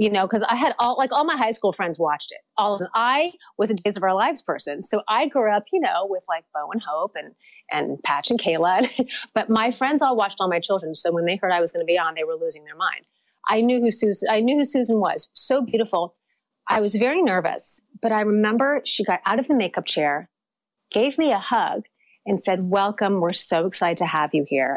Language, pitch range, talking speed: English, 175-250 Hz, 250 wpm